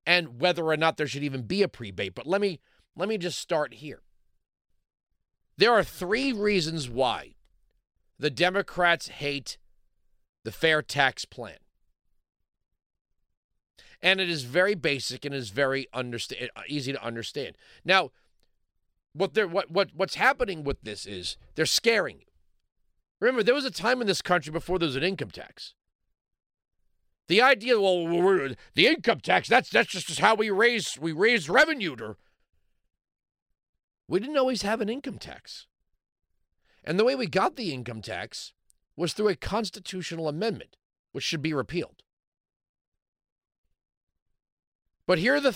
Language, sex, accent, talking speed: English, male, American, 150 wpm